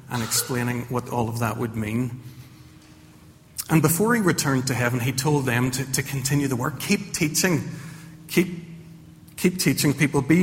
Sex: male